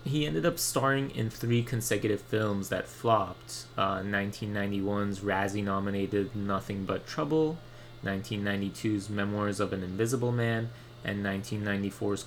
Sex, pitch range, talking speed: male, 100-115 Hz, 120 wpm